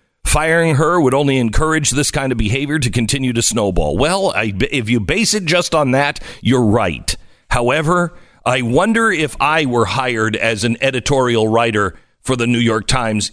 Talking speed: 180 wpm